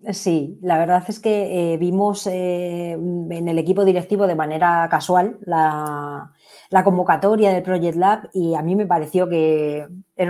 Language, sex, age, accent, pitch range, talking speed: Spanish, female, 20-39, Spanish, 165-200 Hz, 165 wpm